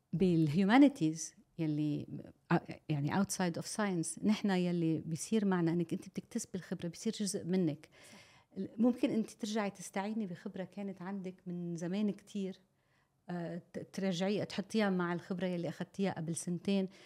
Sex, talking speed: female, 125 wpm